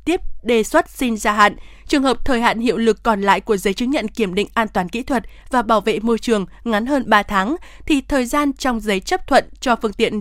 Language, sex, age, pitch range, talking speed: Vietnamese, female, 20-39, 215-265 Hz, 255 wpm